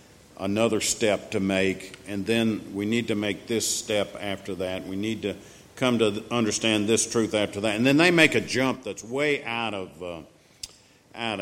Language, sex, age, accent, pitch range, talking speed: English, male, 50-69, American, 95-115 Hz, 190 wpm